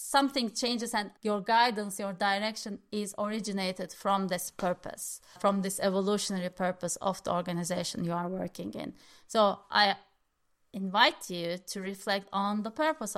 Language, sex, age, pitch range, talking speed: English, female, 30-49, 185-225 Hz, 145 wpm